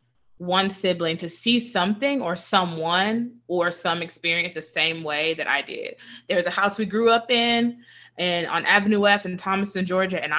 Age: 20-39